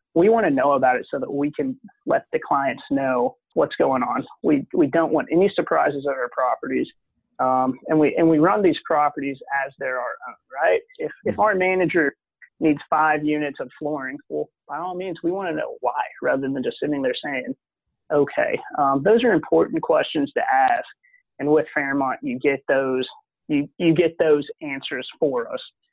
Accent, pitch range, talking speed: American, 135-175 Hz, 195 wpm